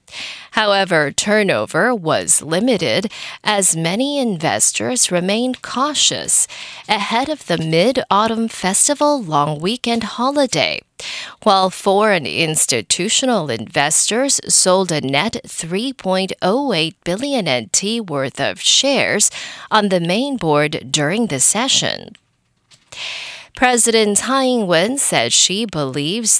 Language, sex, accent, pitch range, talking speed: English, female, American, 165-245 Hz, 100 wpm